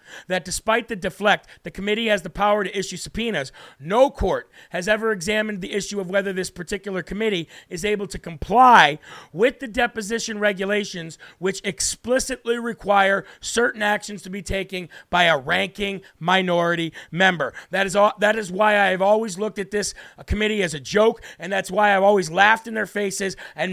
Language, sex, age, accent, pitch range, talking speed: English, male, 40-59, American, 190-220 Hz, 175 wpm